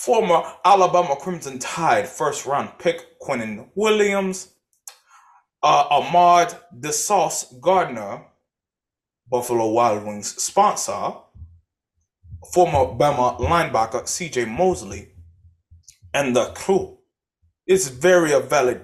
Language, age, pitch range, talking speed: English, 20-39, 120-195 Hz, 90 wpm